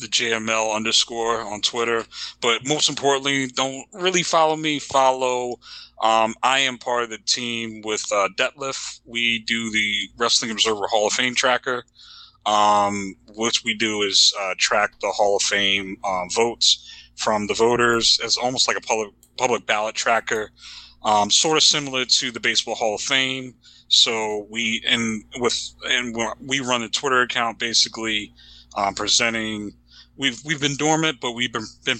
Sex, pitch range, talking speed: male, 105-125 Hz, 165 wpm